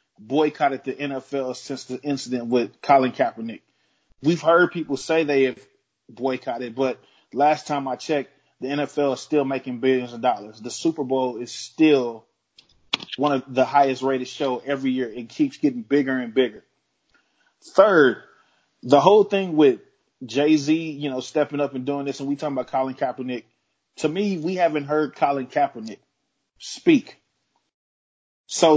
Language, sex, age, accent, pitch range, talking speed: English, male, 20-39, American, 130-155 Hz, 160 wpm